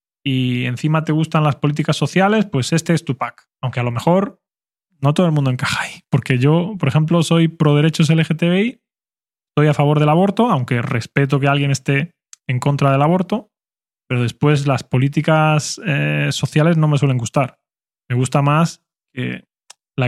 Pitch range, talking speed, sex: 130-165 Hz, 175 wpm, male